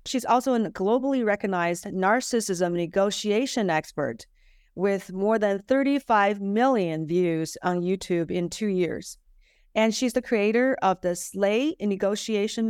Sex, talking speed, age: female, 130 wpm, 40-59